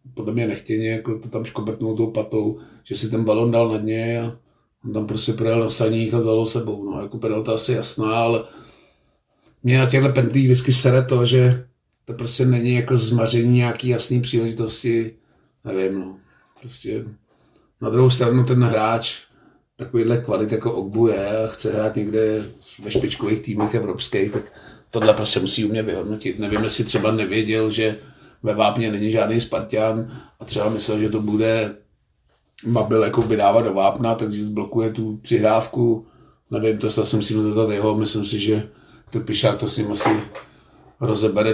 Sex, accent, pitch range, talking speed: male, native, 110-115 Hz, 165 wpm